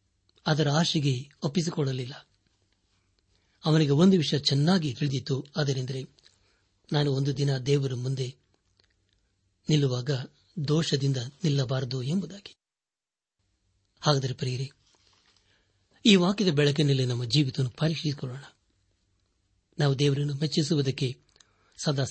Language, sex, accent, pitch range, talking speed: Kannada, male, native, 100-150 Hz, 75 wpm